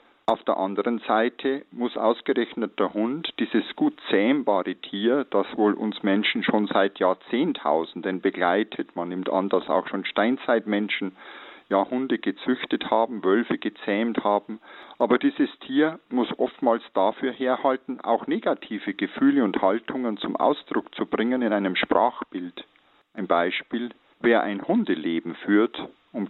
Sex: male